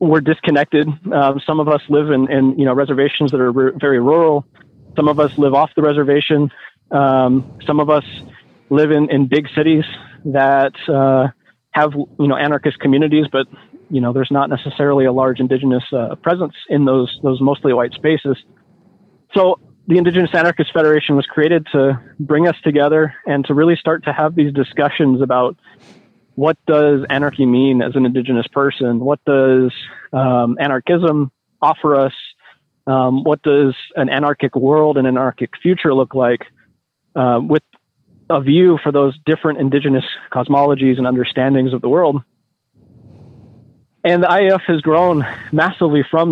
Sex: male